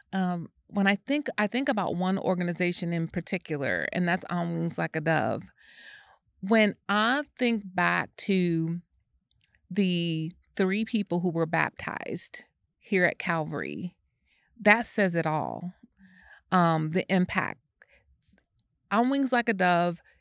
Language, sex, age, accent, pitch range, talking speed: English, female, 30-49, American, 170-205 Hz, 130 wpm